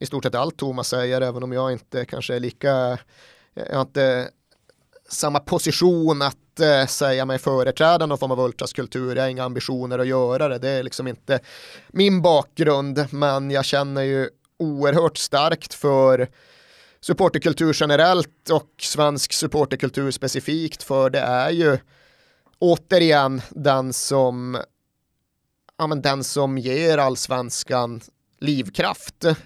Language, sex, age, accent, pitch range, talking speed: Swedish, male, 30-49, native, 125-150 Hz, 140 wpm